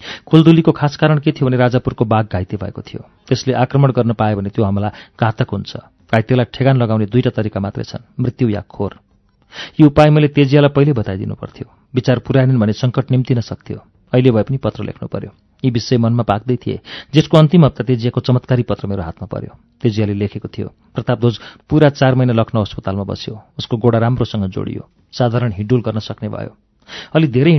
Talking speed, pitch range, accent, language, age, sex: 75 wpm, 110-140 Hz, Indian, English, 40-59, male